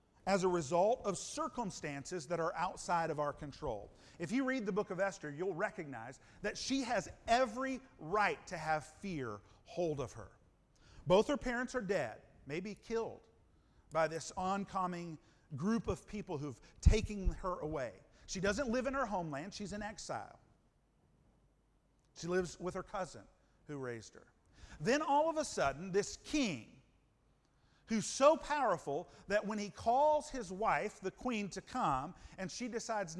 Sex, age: male, 50-69